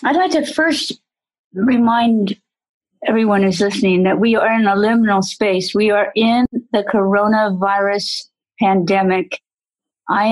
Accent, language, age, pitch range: American, English, 50-69, 195-230 Hz